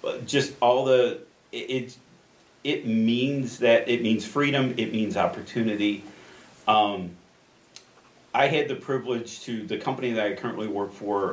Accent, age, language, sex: American, 40-59, English, male